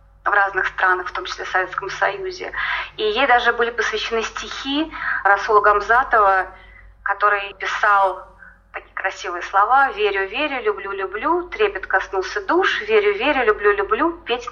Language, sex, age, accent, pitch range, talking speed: Russian, female, 20-39, native, 205-295 Hz, 140 wpm